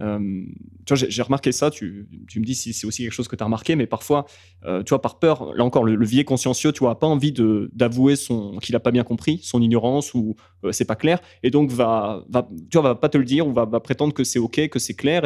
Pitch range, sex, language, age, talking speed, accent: 110-135 Hz, male, French, 20-39, 285 wpm, French